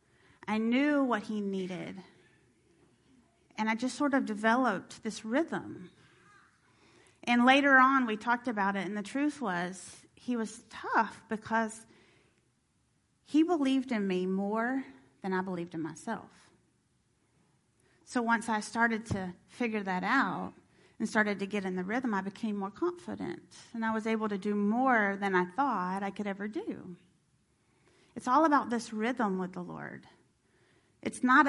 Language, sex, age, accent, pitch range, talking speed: English, female, 30-49, American, 205-260 Hz, 155 wpm